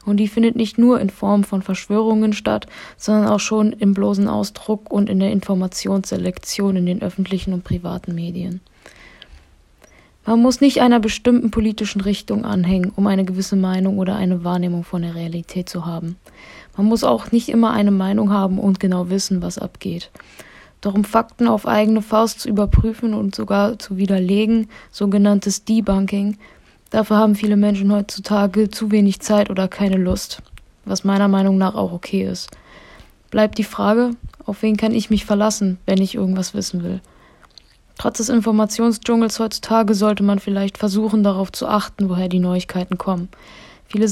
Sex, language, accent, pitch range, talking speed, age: female, German, German, 190-215 Hz, 165 wpm, 20-39